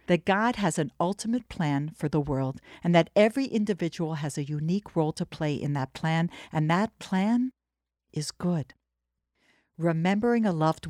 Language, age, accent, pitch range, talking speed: English, 60-79, American, 140-185 Hz, 165 wpm